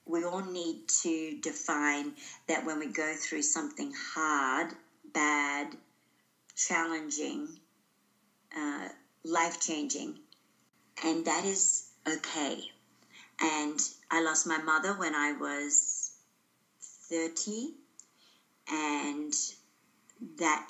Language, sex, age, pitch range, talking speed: English, female, 50-69, 165-230 Hz, 90 wpm